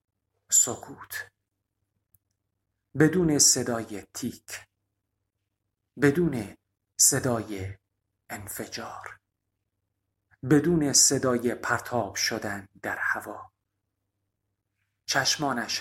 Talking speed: 55 wpm